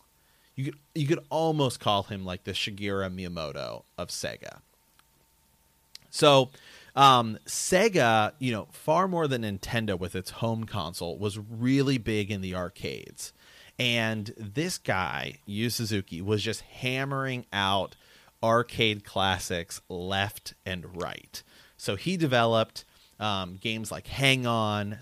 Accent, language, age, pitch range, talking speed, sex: American, English, 30-49, 100-135 Hz, 125 wpm, male